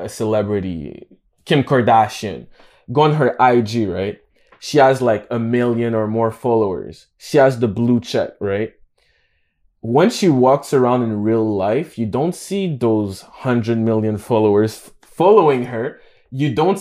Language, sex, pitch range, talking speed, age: English, male, 115-155 Hz, 145 wpm, 20-39